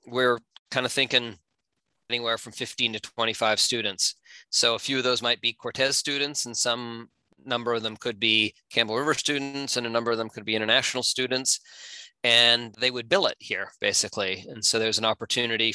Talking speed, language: 185 wpm, English